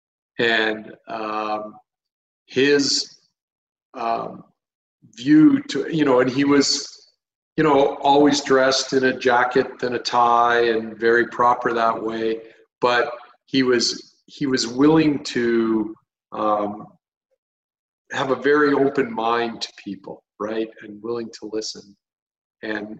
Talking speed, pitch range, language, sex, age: 125 wpm, 105-135 Hz, English, male, 40-59